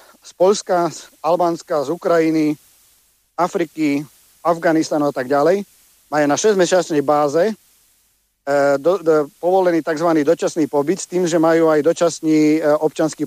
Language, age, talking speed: Slovak, 50-69, 135 wpm